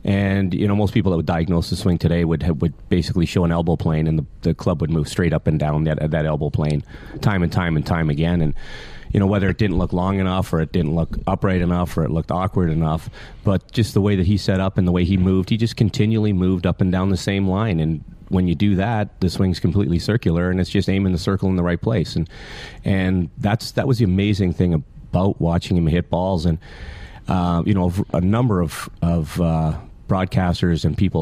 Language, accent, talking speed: English, American, 240 wpm